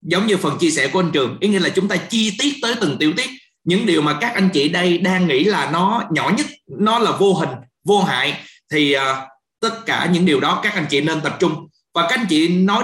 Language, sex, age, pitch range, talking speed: Vietnamese, male, 20-39, 160-210 Hz, 260 wpm